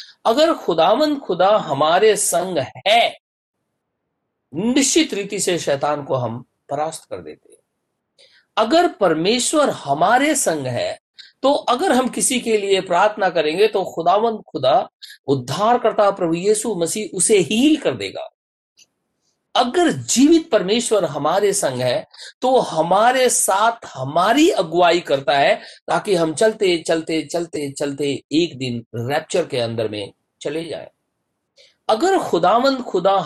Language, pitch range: Hindi, 150-245 Hz